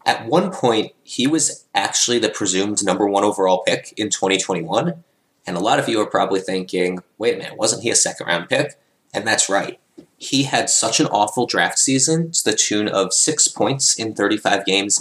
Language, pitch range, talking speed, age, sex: English, 95-130 Hz, 200 wpm, 20-39, male